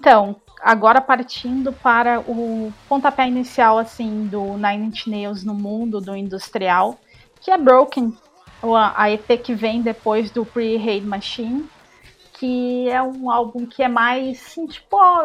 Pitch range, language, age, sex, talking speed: 205-260 Hz, Portuguese, 30-49, female, 140 wpm